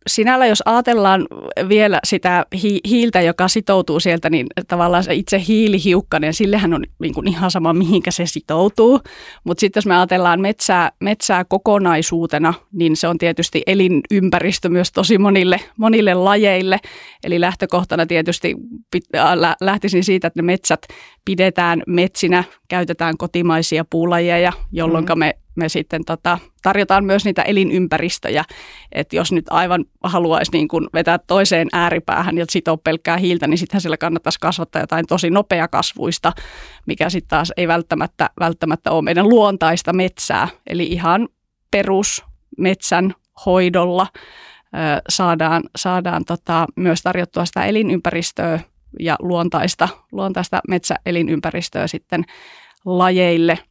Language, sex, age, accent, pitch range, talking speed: Finnish, female, 30-49, native, 170-190 Hz, 130 wpm